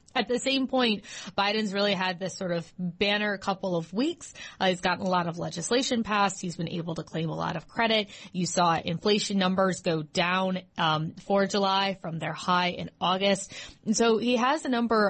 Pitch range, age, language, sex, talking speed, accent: 180-220 Hz, 20-39, English, female, 205 wpm, American